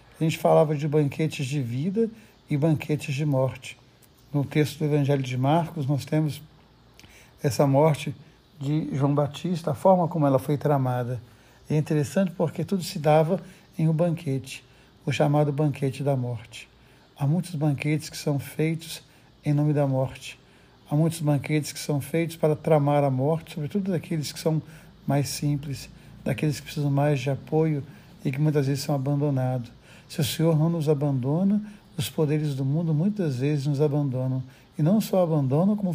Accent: Brazilian